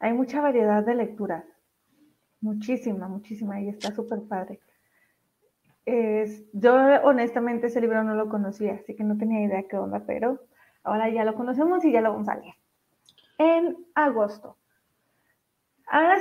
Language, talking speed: Spanish, 150 wpm